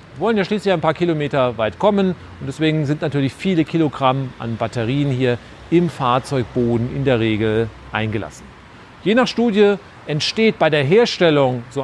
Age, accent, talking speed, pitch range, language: 40-59, German, 155 wpm, 130-175 Hz, German